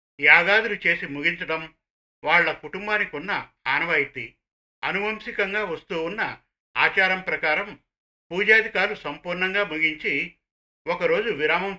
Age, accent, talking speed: 50-69, native, 85 wpm